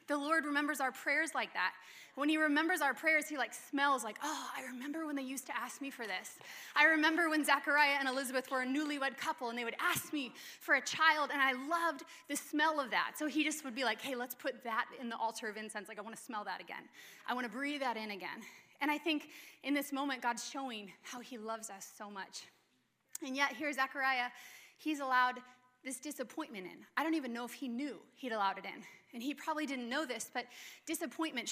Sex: female